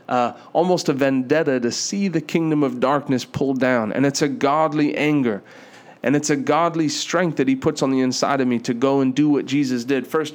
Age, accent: 30-49, American